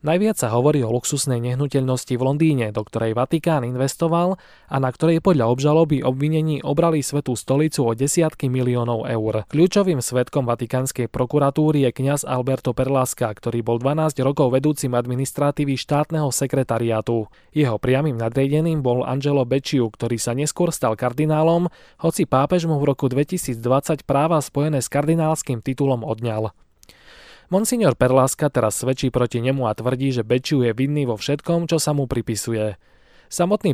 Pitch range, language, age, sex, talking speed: 125-155 Hz, Slovak, 20-39, male, 150 wpm